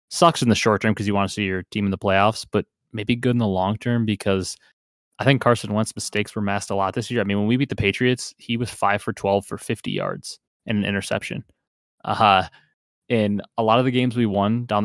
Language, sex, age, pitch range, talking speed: English, male, 20-39, 100-115 Hz, 260 wpm